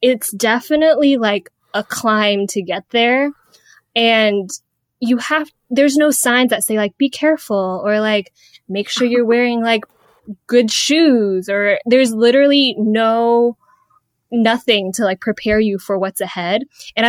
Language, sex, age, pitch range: English, female, 10-29, 200-245 Hz